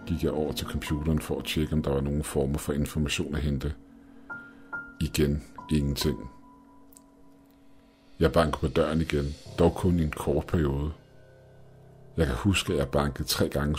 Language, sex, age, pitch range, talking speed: Danish, male, 60-79, 75-95 Hz, 165 wpm